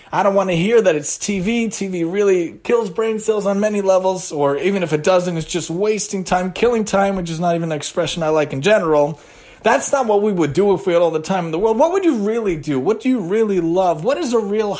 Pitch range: 170-220 Hz